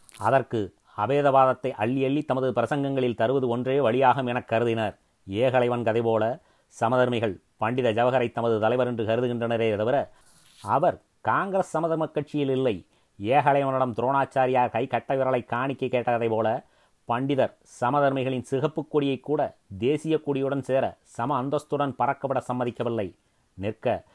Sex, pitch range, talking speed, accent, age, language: male, 120-140 Hz, 115 wpm, native, 30-49, Tamil